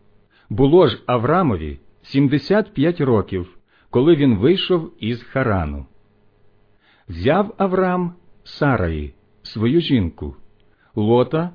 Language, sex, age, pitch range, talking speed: Ukrainian, male, 50-69, 100-160 Hz, 90 wpm